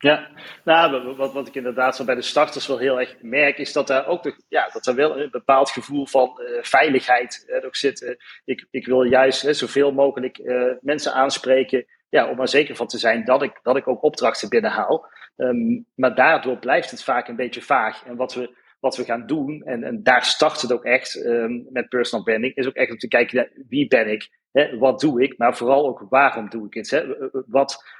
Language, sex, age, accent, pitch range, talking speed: Dutch, male, 40-59, Dutch, 125-150 Hz, 225 wpm